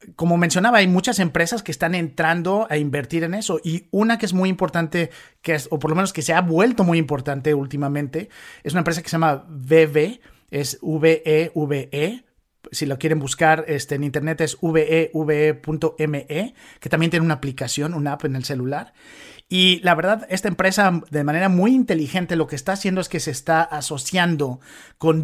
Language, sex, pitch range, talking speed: Spanish, male, 150-170 Hz, 190 wpm